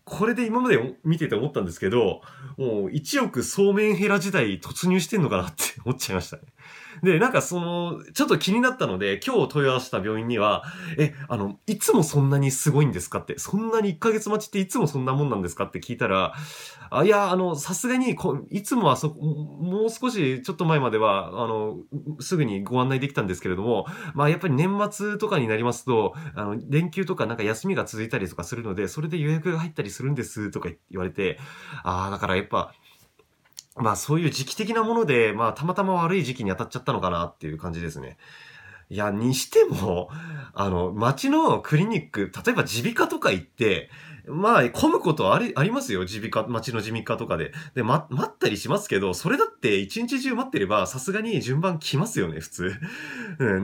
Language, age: Japanese, 20-39